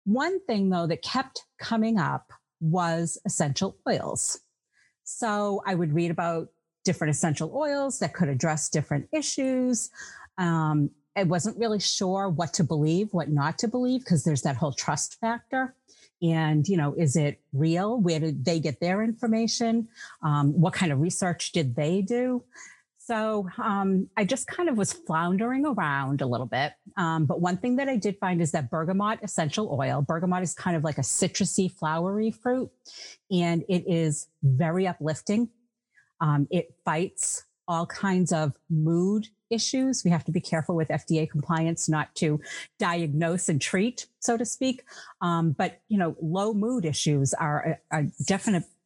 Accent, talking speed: American, 165 wpm